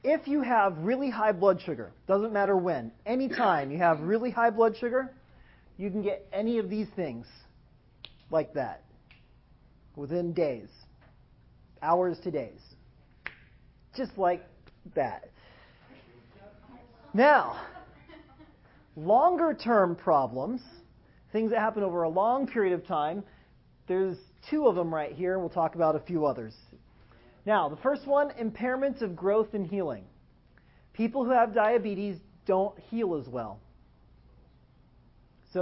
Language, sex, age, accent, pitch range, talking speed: English, male, 40-59, American, 145-215 Hz, 130 wpm